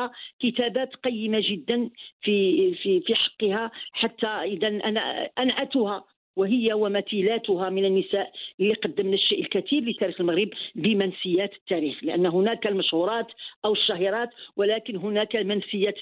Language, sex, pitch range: Arabic, female, 195-260 Hz